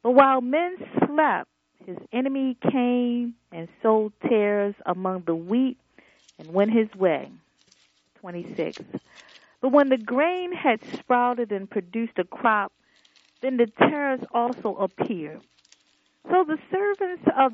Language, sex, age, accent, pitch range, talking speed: English, female, 40-59, American, 205-275 Hz, 125 wpm